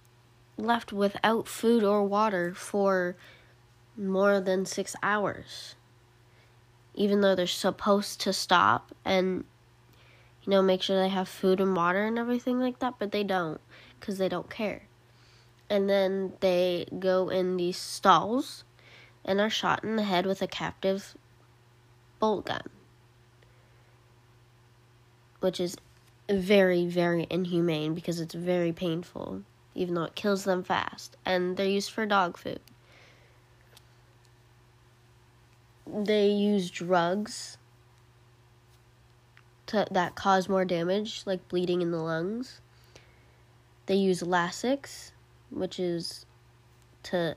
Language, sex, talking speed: English, female, 120 wpm